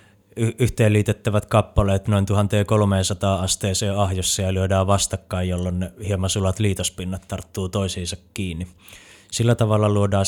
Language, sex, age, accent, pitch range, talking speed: Finnish, male, 20-39, native, 95-105 Hz, 110 wpm